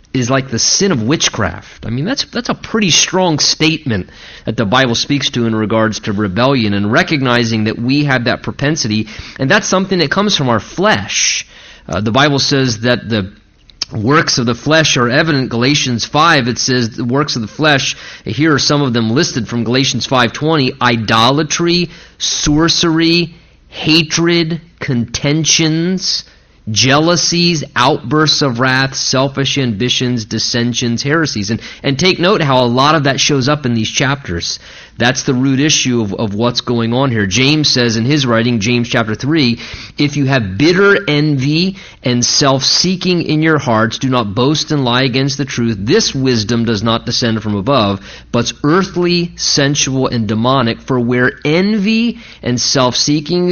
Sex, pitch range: male, 115-155 Hz